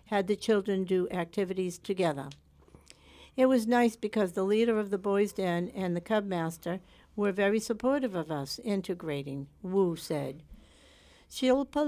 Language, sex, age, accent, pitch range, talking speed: English, female, 60-79, American, 175-215 Hz, 145 wpm